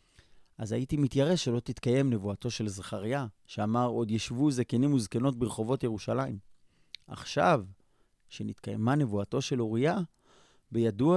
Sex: male